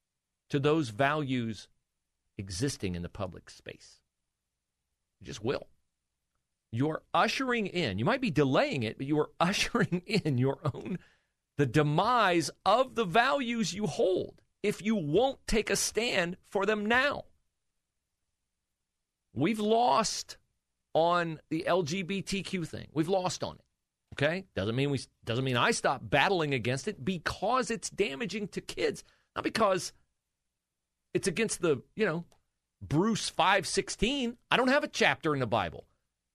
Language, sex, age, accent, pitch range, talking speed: English, male, 40-59, American, 130-195 Hz, 140 wpm